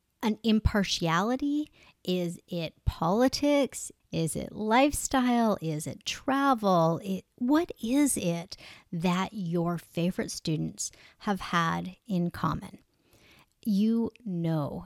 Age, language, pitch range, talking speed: 40-59, English, 170-215 Hz, 95 wpm